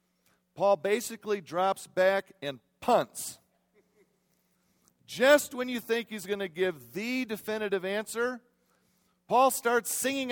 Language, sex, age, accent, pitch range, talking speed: English, male, 50-69, American, 170-225 Hz, 115 wpm